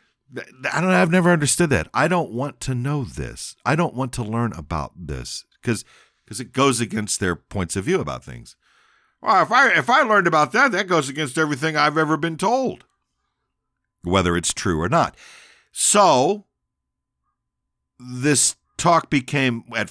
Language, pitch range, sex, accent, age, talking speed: English, 85-130 Hz, male, American, 50-69, 170 wpm